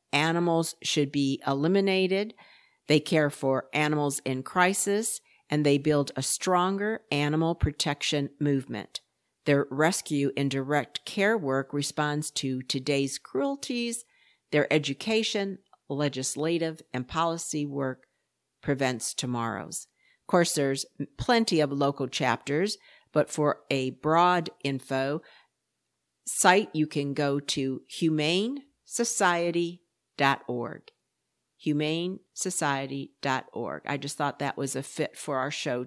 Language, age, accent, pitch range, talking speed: English, 50-69, American, 140-180 Hz, 115 wpm